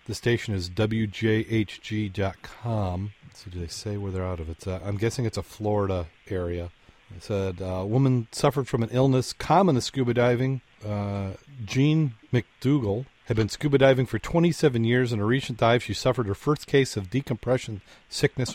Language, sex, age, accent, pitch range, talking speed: English, male, 40-59, American, 100-125 Hz, 175 wpm